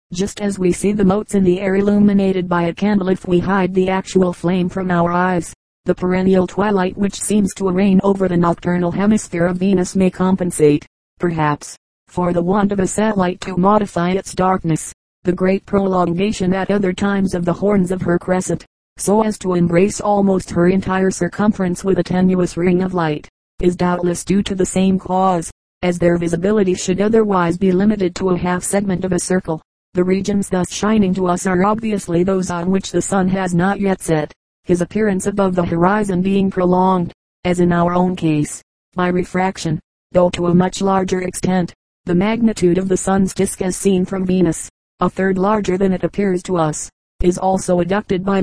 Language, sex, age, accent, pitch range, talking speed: English, female, 40-59, American, 180-195 Hz, 190 wpm